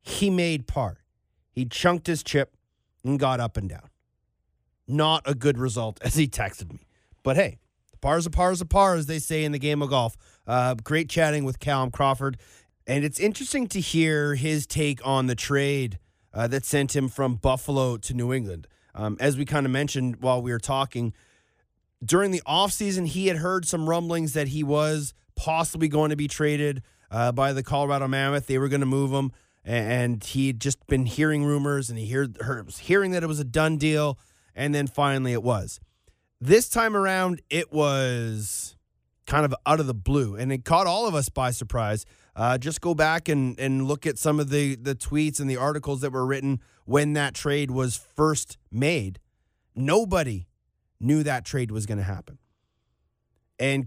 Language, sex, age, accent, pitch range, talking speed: English, male, 30-49, American, 125-155 Hz, 190 wpm